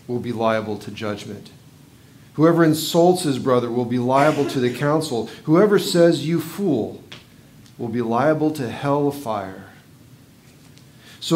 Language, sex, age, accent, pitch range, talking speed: English, male, 40-59, American, 125-155 Hz, 135 wpm